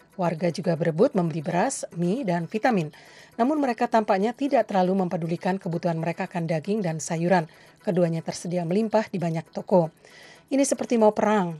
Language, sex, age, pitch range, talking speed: Indonesian, female, 40-59, 170-205 Hz, 155 wpm